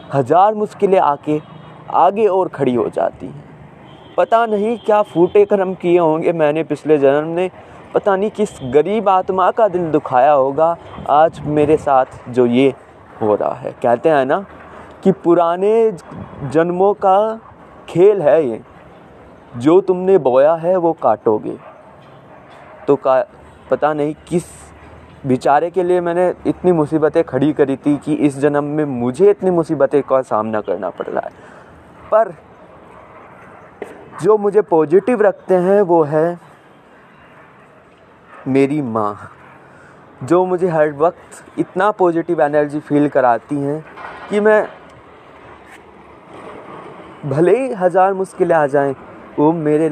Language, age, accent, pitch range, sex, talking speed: Hindi, 20-39, native, 140-185 Hz, male, 130 wpm